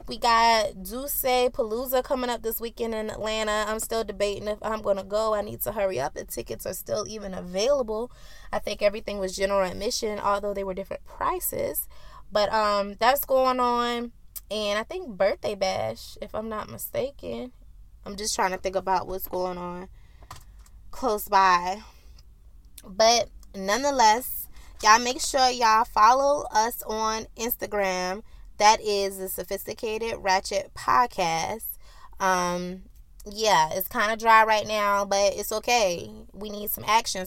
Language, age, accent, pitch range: English, 20-39, American, 195-230 Hz